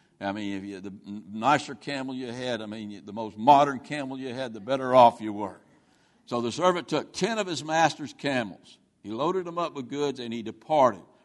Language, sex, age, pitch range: English, male, 60-79, 110-140 Hz